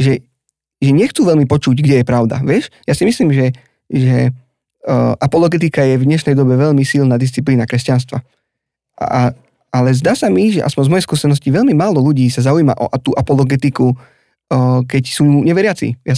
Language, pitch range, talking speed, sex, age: Slovak, 125-150 Hz, 180 wpm, male, 20-39